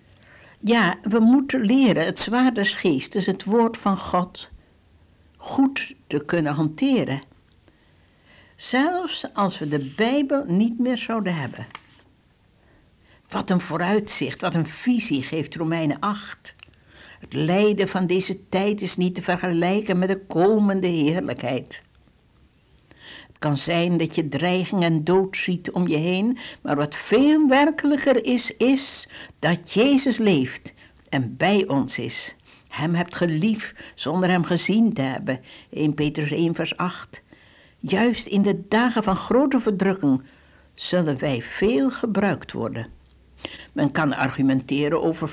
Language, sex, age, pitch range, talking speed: Dutch, female, 60-79, 150-220 Hz, 135 wpm